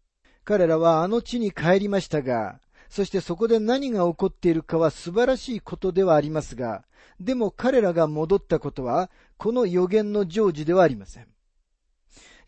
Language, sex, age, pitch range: Japanese, male, 40-59, 145-210 Hz